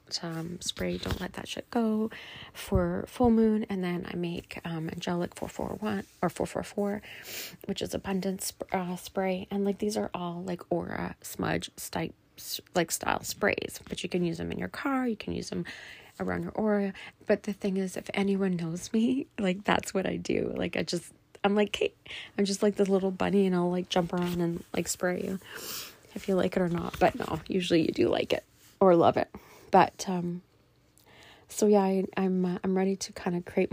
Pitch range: 175-200 Hz